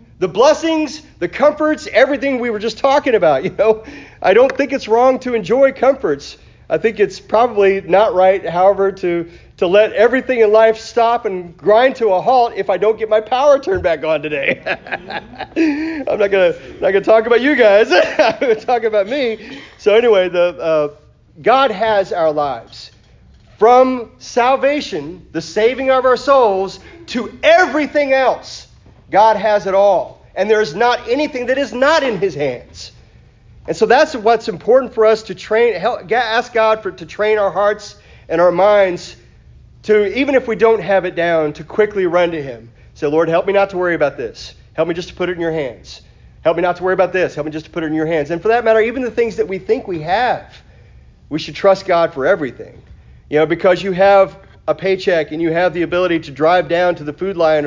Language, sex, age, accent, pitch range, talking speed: English, male, 40-59, American, 175-245 Hz, 210 wpm